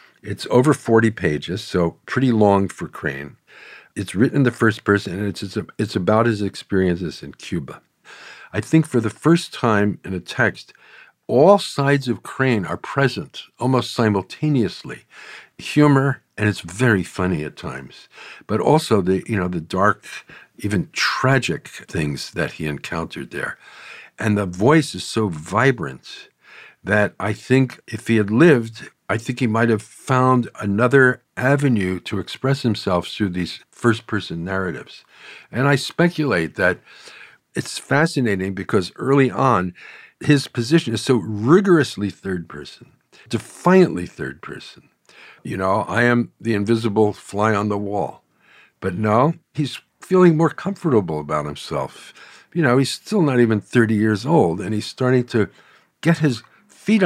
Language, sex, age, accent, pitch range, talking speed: English, male, 50-69, American, 100-135 Hz, 150 wpm